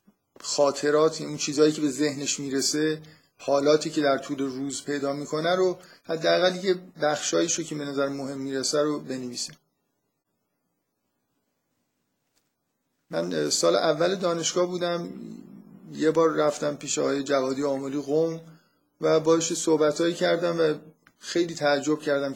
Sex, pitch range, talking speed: male, 135-155 Hz, 125 wpm